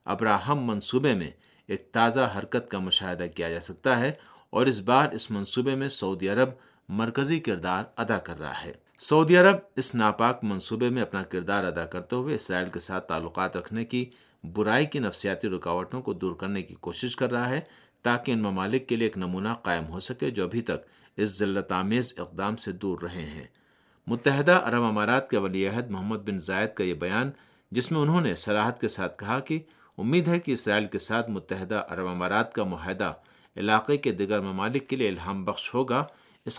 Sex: male